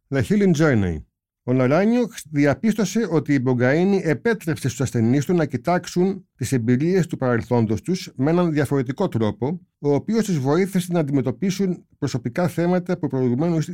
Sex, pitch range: male, 125-175 Hz